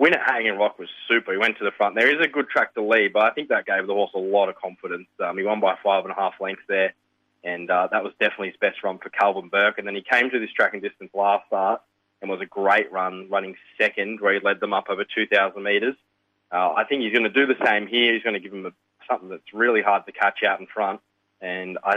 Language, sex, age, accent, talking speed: English, male, 20-39, Australian, 280 wpm